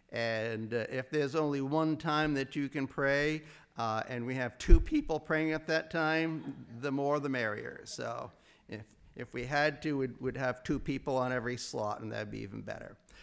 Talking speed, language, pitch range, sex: 200 wpm, English, 115-145 Hz, male